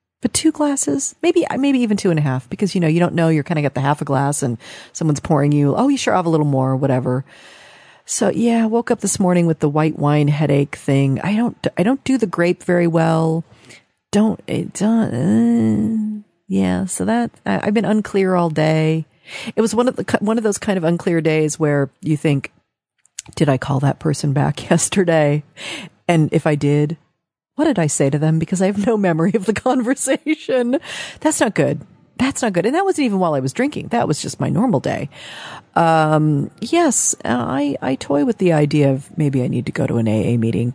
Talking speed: 220 wpm